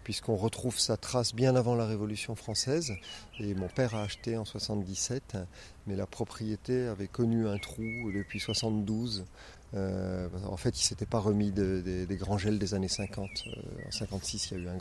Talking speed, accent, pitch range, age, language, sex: 205 wpm, French, 100-120 Hz, 40-59, French, male